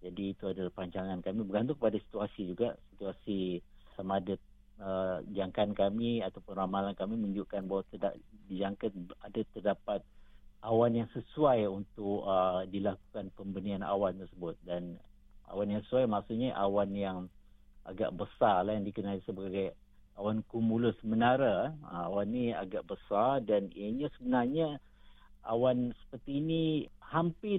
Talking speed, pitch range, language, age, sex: 135 wpm, 100-120 Hz, Malay, 50-69, male